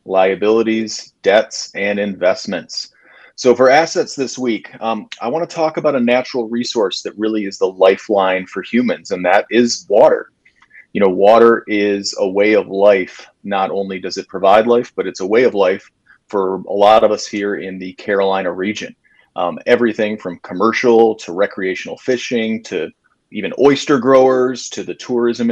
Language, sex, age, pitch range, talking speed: English, male, 30-49, 95-125 Hz, 170 wpm